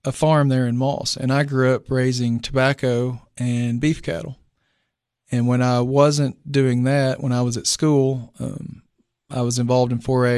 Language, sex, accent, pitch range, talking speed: English, male, American, 120-130 Hz, 180 wpm